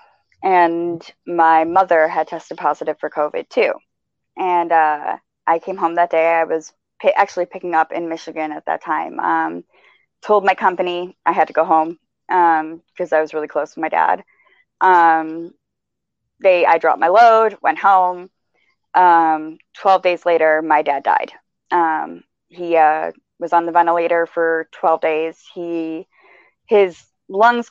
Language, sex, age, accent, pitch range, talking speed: English, female, 20-39, American, 160-185 Hz, 160 wpm